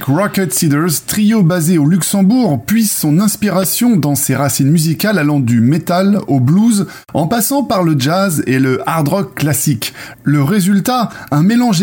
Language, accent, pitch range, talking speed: French, French, 145-200 Hz, 160 wpm